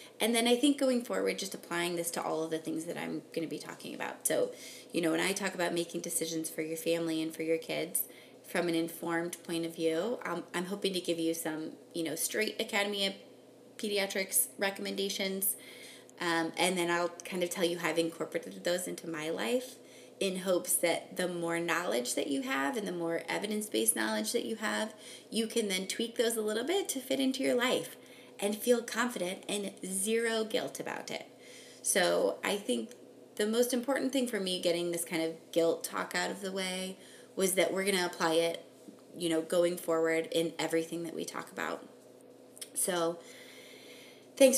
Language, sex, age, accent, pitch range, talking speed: English, female, 20-39, American, 165-215 Hz, 200 wpm